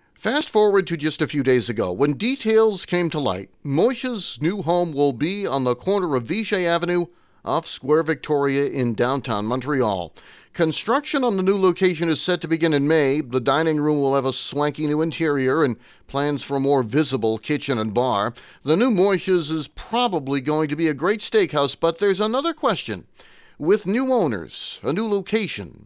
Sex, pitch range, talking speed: male, 135-195 Hz, 185 wpm